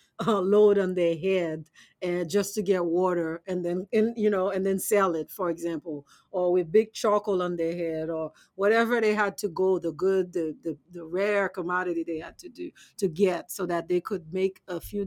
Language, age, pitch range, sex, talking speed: English, 50-69, 165-195 Hz, female, 210 wpm